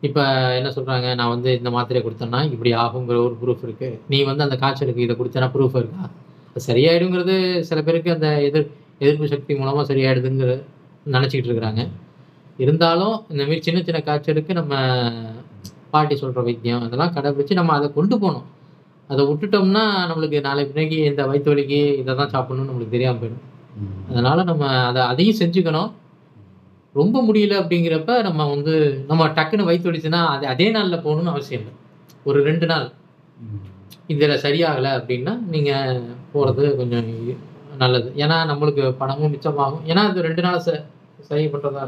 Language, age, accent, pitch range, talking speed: Tamil, 20-39, native, 125-160 Hz, 140 wpm